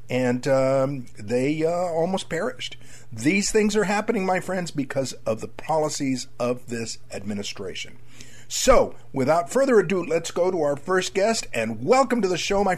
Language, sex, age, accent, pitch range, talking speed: English, male, 50-69, American, 115-155 Hz, 165 wpm